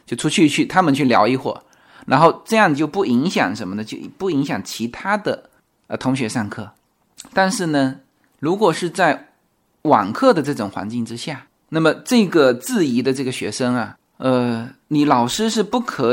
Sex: male